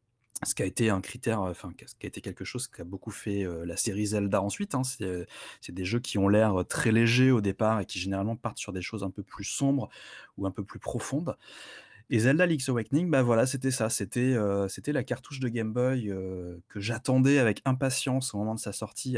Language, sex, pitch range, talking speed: French, male, 95-120 Hz, 240 wpm